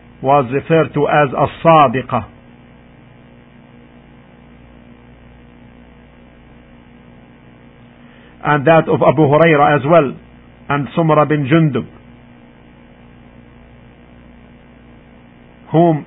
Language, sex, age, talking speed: English, male, 50-69, 65 wpm